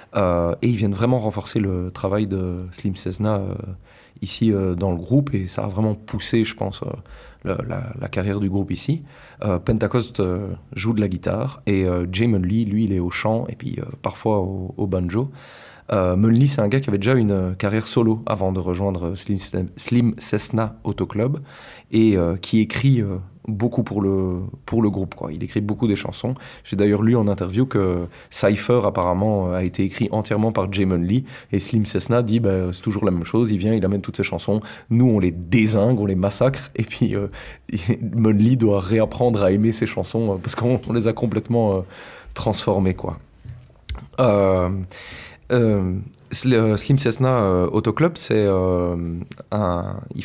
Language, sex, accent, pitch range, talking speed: French, male, French, 95-120 Hz, 185 wpm